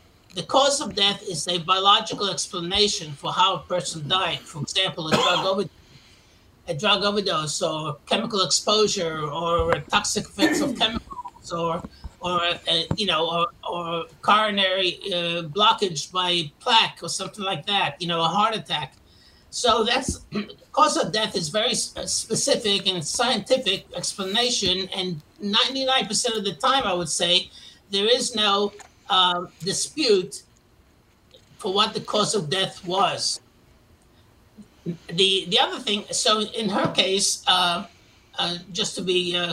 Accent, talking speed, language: American, 150 wpm, English